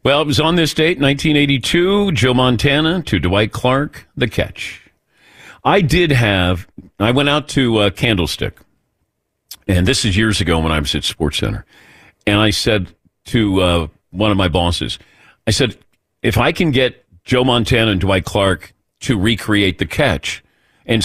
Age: 50-69